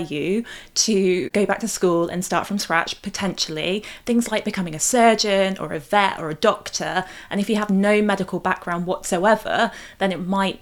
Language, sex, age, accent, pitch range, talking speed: English, female, 20-39, British, 180-220 Hz, 185 wpm